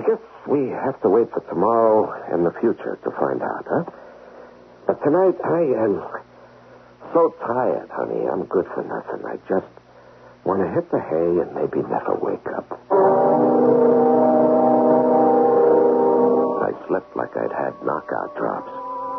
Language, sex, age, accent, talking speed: English, male, 60-79, American, 140 wpm